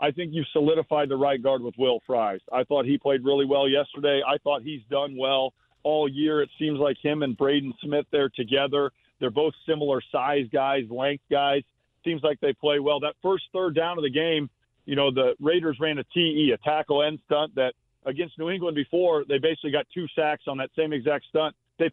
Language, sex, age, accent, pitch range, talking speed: English, male, 40-59, American, 135-160 Hz, 215 wpm